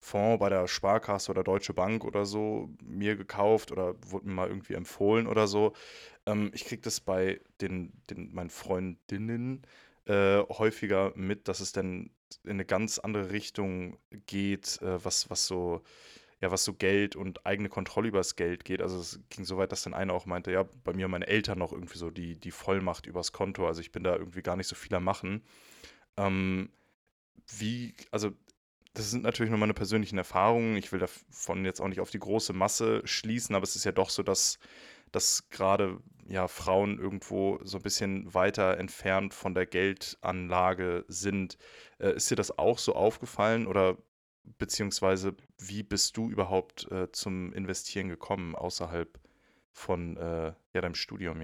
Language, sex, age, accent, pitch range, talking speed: German, male, 20-39, German, 90-105 Hz, 180 wpm